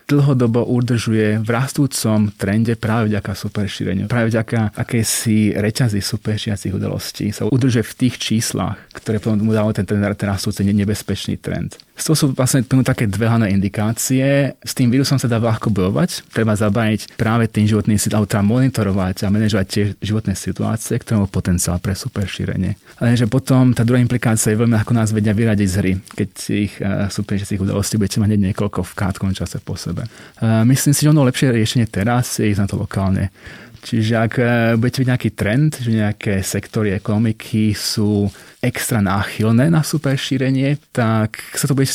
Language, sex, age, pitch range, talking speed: Slovak, male, 30-49, 100-120 Hz, 170 wpm